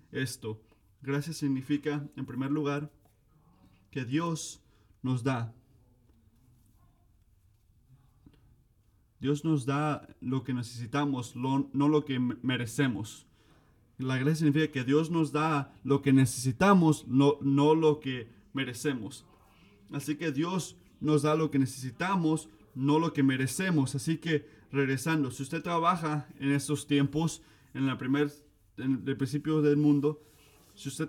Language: Spanish